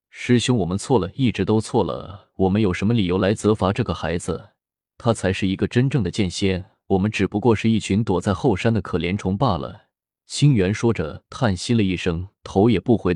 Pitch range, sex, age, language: 90-115 Hz, male, 20-39, Chinese